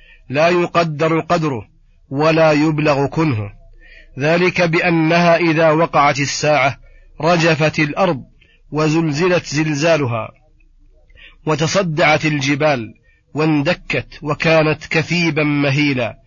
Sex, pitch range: male, 145-165 Hz